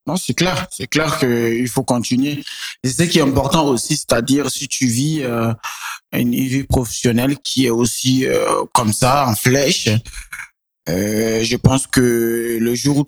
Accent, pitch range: French, 120-150 Hz